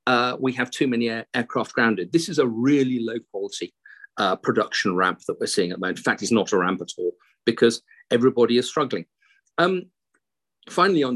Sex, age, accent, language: male, 40-59, British, English